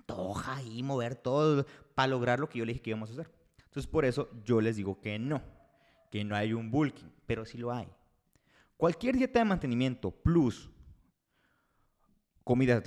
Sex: male